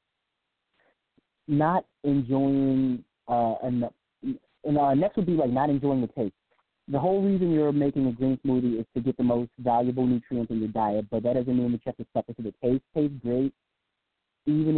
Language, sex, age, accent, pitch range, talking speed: English, male, 30-49, American, 125-150 Hz, 185 wpm